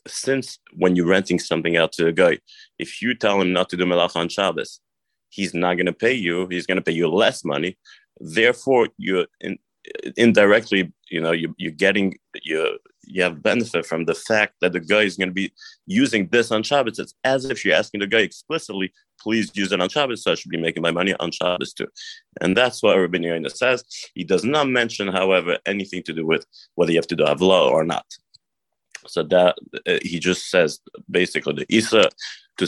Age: 30-49